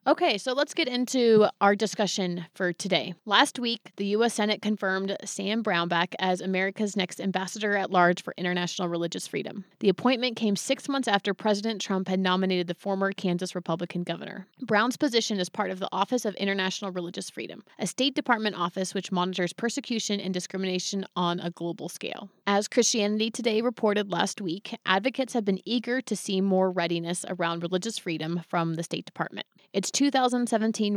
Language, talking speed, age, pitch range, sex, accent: English, 170 wpm, 30-49, 180-215 Hz, female, American